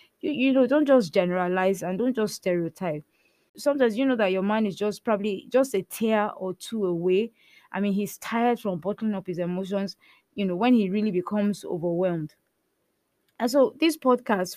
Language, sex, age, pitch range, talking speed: English, female, 20-39, 180-230 Hz, 185 wpm